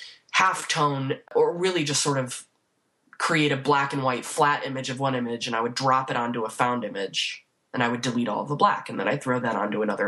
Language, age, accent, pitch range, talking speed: English, 20-39, American, 120-145 Hz, 240 wpm